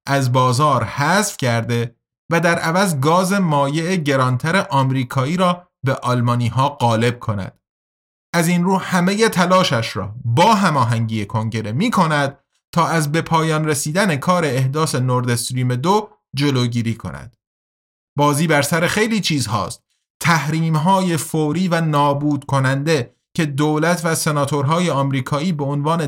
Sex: male